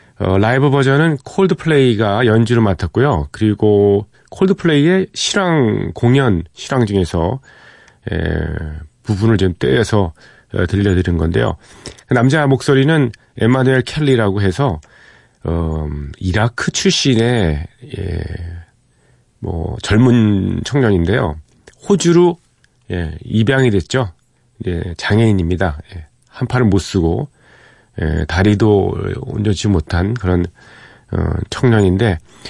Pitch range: 90-125 Hz